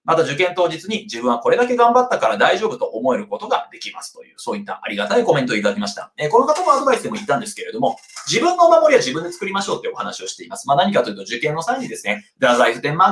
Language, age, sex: Japanese, 30-49, male